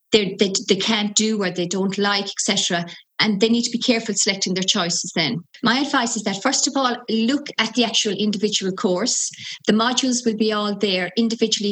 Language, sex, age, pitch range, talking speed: English, female, 30-49, 205-240 Hz, 205 wpm